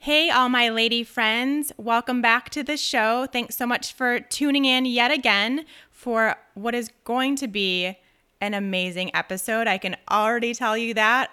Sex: female